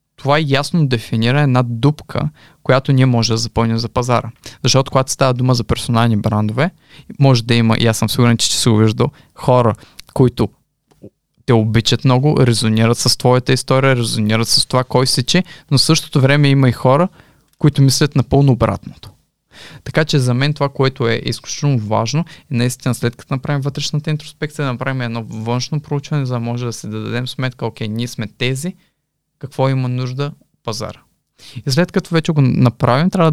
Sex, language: male, Bulgarian